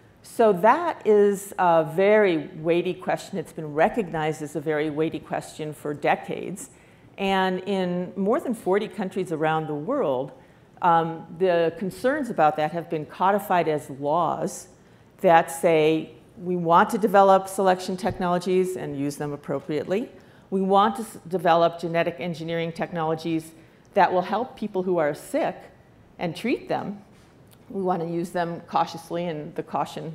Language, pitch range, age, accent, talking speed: English, 155-190 Hz, 50-69, American, 145 wpm